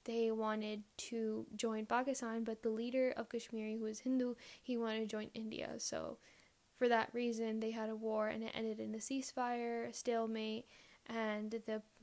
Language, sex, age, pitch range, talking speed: English, female, 10-29, 215-235 Hz, 180 wpm